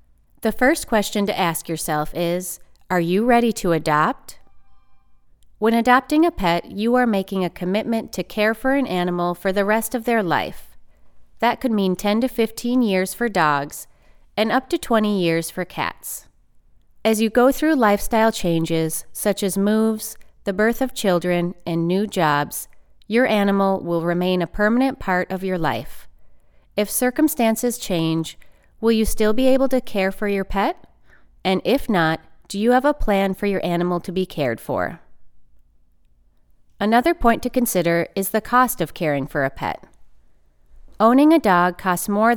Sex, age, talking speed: female, 30-49, 170 wpm